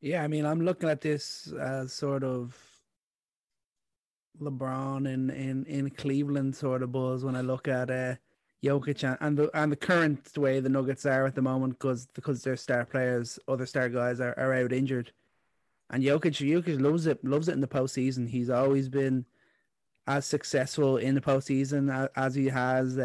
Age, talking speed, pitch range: 30-49, 185 wpm, 130-145 Hz